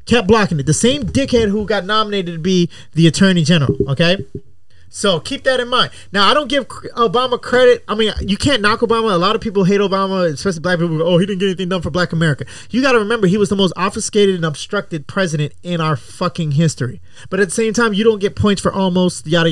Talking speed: 240 wpm